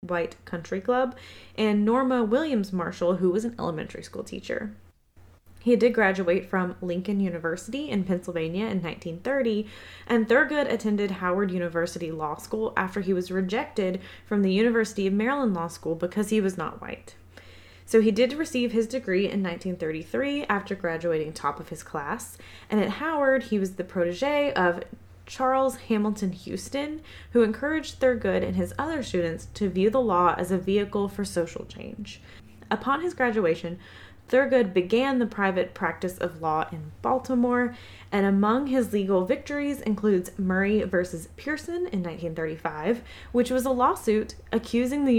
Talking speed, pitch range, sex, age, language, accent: 155 wpm, 175-240 Hz, female, 20-39, English, American